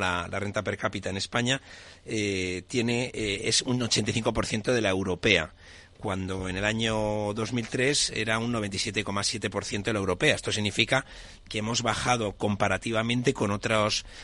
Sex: male